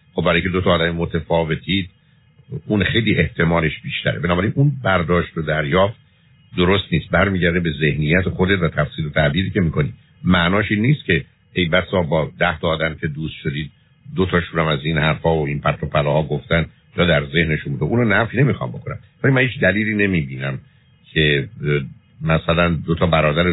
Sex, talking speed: male, 170 wpm